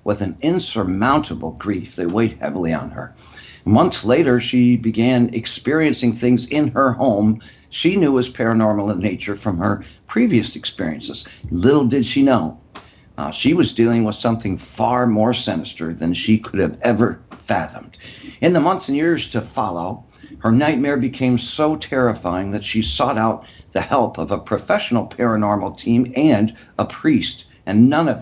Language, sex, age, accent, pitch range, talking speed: English, male, 60-79, American, 105-135 Hz, 160 wpm